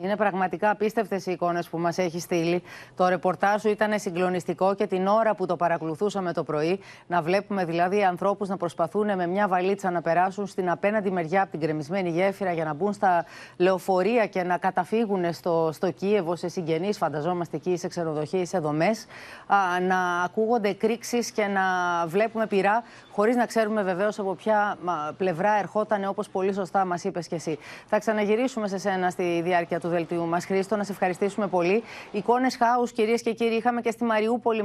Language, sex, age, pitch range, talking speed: Greek, female, 30-49, 175-220 Hz, 180 wpm